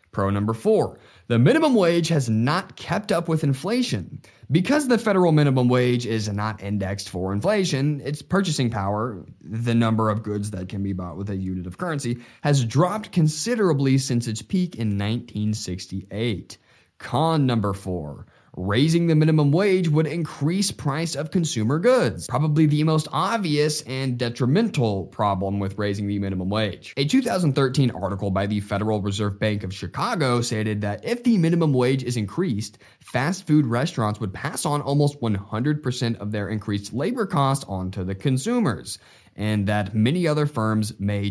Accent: American